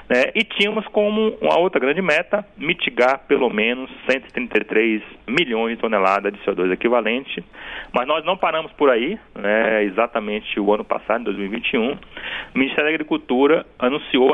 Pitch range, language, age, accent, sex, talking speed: 100-130 Hz, Portuguese, 40-59, Brazilian, male, 145 wpm